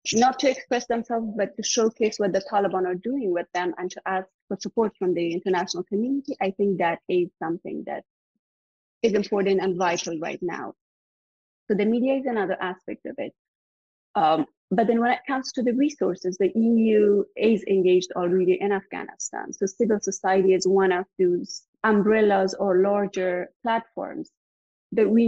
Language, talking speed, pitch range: English, 170 wpm, 190-240 Hz